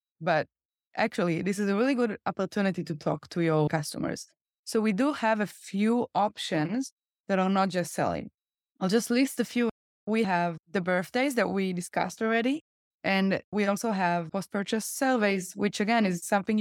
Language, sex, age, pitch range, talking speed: English, female, 20-39, 175-215 Hz, 175 wpm